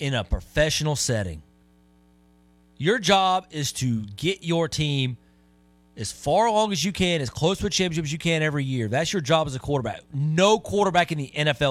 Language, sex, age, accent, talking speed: English, male, 30-49, American, 195 wpm